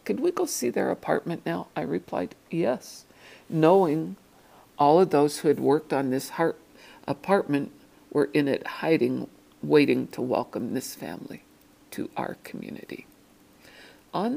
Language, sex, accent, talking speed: English, female, American, 140 wpm